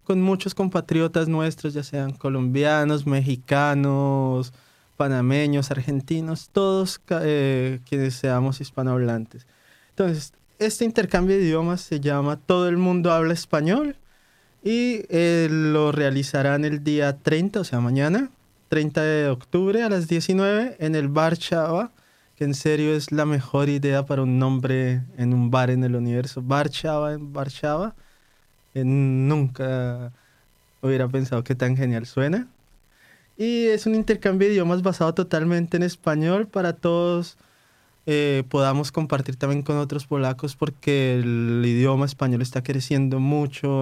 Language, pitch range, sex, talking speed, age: Polish, 135-175 Hz, male, 140 wpm, 20-39